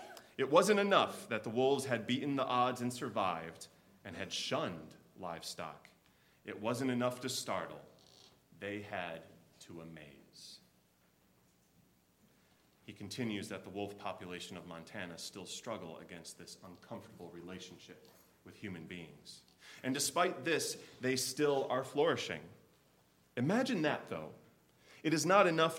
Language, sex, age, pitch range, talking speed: English, male, 30-49, 95-130 Hz, 130 wpm